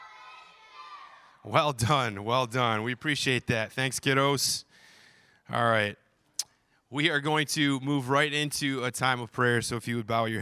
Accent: American